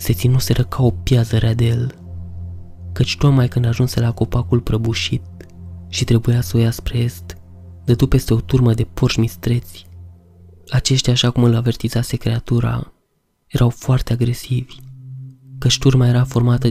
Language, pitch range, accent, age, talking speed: Romanian, 115-130 Hz, native, 20-39, 145 wpm